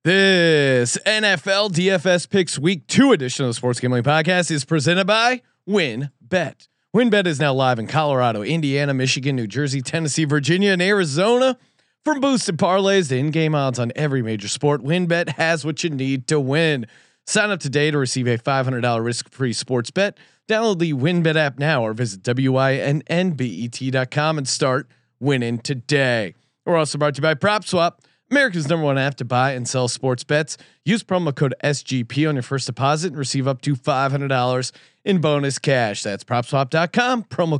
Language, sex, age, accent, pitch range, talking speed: English, male, 30-49, American, 130-170 Hz, 170 wpm